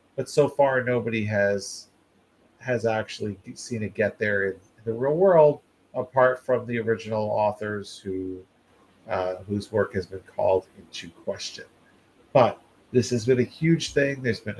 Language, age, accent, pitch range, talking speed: English, 40-59, American, 105-135 Hz, 155 wpm